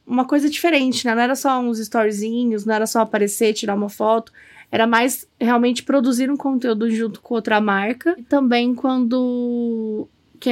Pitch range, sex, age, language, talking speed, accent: 225-260 Hz, female, 10-29, Portuguese, 170 wpm, Brazilian